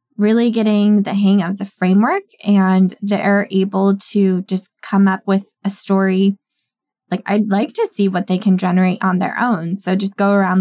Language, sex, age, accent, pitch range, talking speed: English, female, 20-39, American, 185-215 Hz, 185 wpm